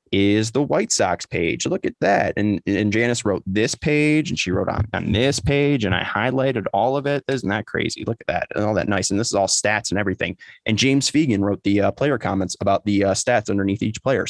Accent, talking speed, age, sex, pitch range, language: American, 250 wpm, 20-39, male, 105-125 Hz, English